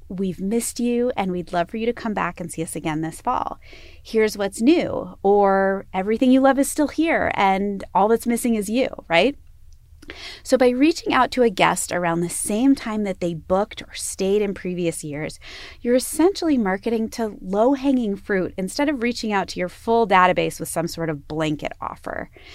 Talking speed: 195 wpm